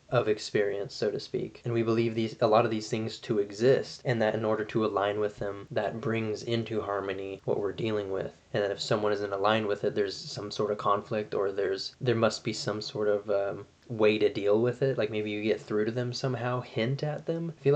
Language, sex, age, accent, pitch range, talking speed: English, male, 20-39, American, 105-120 Hz, 245 wpm